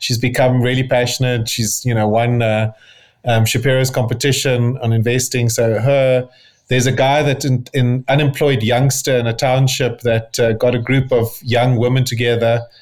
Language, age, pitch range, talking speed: English, 30-49, 120-145 Hz, 165 wpm